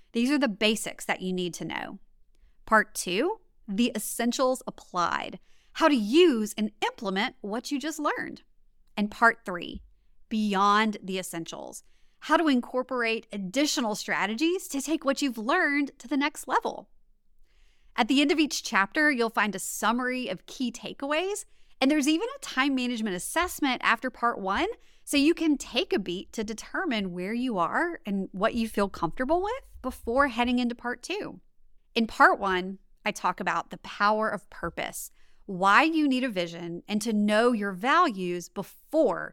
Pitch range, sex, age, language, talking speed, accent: 200-280 Hz, female, 30-49, English, 165 wpm, American